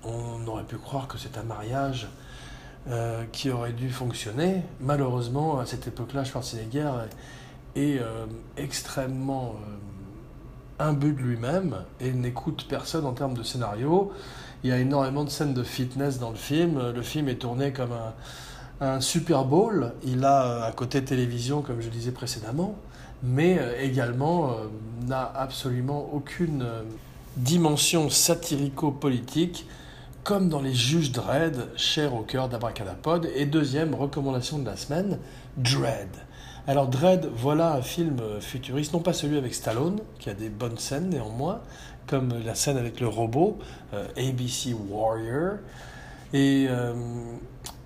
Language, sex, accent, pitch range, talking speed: French, male, French, 120-145 Hz, 145 wpm